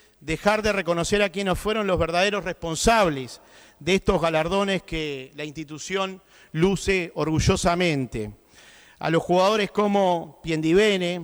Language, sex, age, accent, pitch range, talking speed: Spanish, male, 40-59, Argentinian, 160-200 Hz, 115 wpm